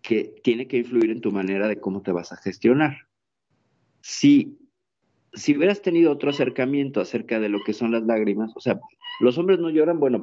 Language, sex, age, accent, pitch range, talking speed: Spanish, male, 50-69, Mexican, 105-145 Hz, 195 wpm